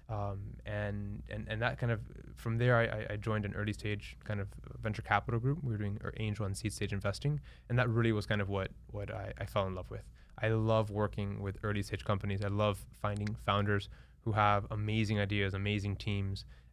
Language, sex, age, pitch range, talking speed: English, male, 20-39, 100-115 Hz, 215 wpm